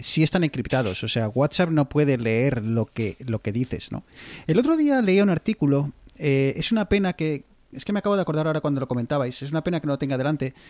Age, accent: 30-49, Spanish